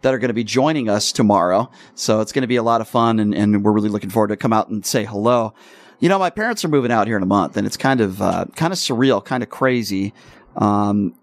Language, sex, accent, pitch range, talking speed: English, male, American, 115-145 Hz, 280 wpm